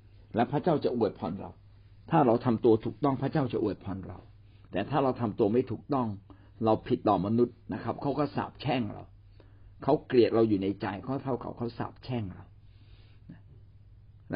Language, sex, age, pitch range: Thai, male, 60-79, 100-120 Hz